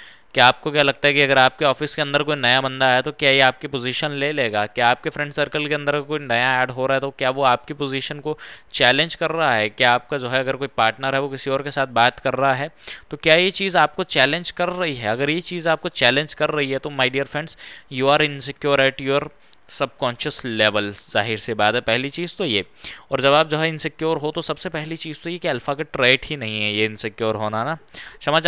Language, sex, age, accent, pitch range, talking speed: Hindi, male, 10-29, native, 125-160 Hz, 260 wpm